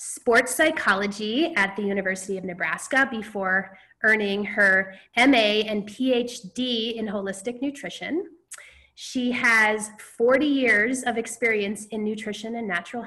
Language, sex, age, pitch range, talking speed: English, female, 20-39, 200-265 Hz, 120 wpm